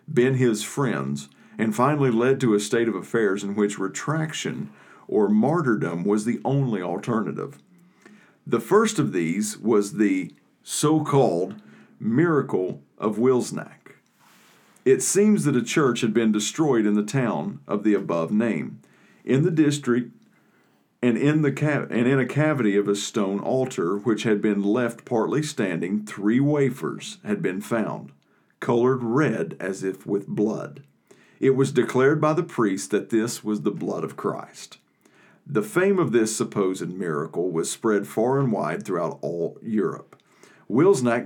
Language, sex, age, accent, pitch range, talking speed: English, male, 50-69, American, 105-145 Hz, 150 wpm